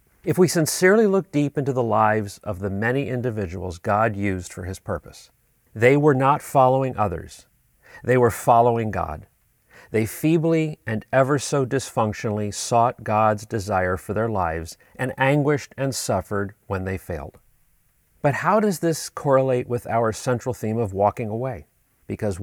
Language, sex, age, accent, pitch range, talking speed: English, male, 40-59, American, 100-130 Hz, 155 wpm